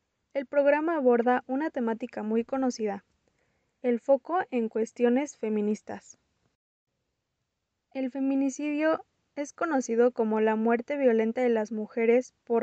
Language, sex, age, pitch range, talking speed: Spanish, female, 20-39, 220-265 Hz, 115 wpm